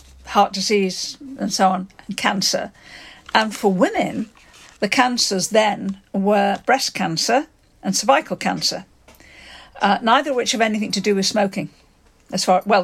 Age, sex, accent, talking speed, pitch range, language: 50-69, female, British, 150 wpm, 195-245 Hz, English